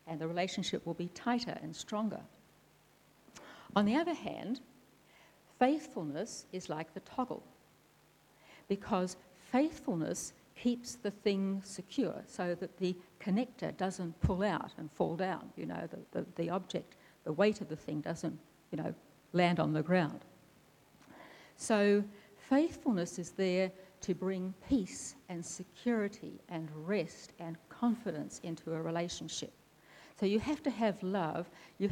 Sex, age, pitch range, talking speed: female, 60-79, 170-215 Hz, 140 wpm